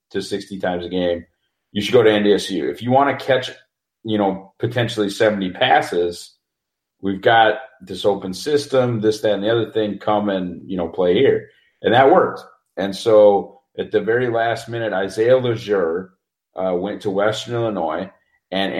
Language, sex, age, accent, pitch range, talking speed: English, male, 40-59, American, 95-115 Hz, 175 wpm